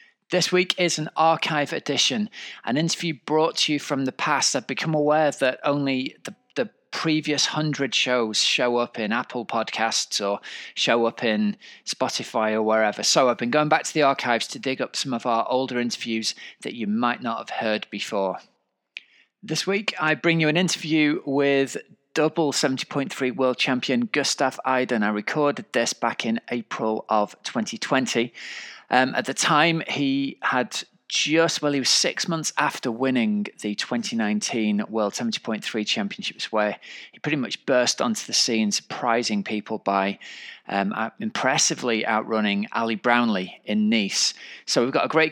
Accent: British